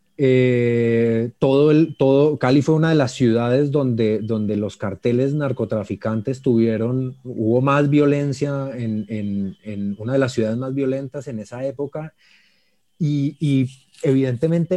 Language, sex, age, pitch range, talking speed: Spanish, male, 30-49, 120-150 Hz, 140 wpm